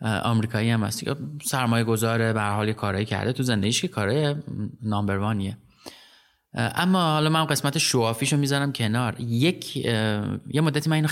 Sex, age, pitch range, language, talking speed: male, 30-49, 110-145 Hz, Persian, 140 wpm